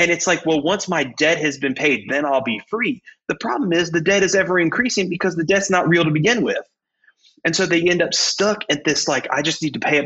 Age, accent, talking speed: 30-49, American, 270 wpm